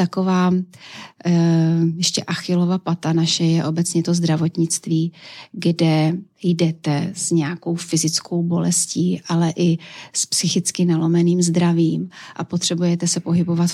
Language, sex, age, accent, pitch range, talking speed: Czech, female, 30-49, native, 165-180 Hz, 110 wpm